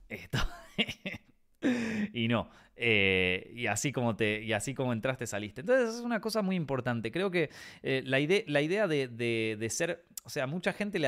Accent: Argentinian